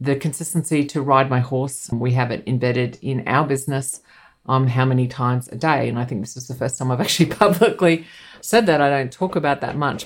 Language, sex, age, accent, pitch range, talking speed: English, female, 50-69, Australian, 125-145 Hz, 225 wpm